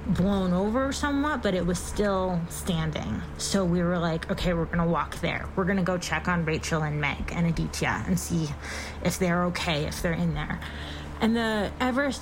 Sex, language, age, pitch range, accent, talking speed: female, English, 20-39, 165-195 Hz, American, 200 wpm